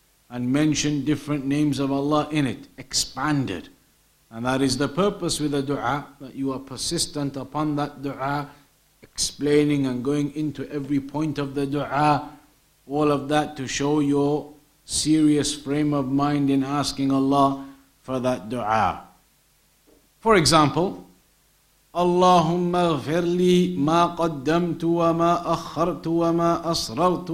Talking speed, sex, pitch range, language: 130 wpm, male, 140-170 Hz, English